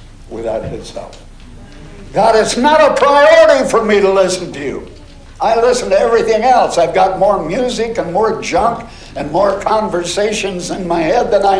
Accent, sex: American, male